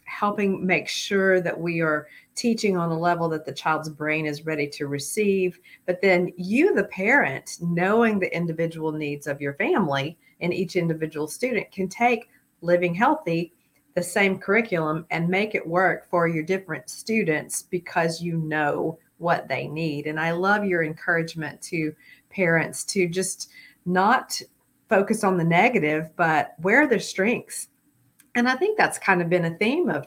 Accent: American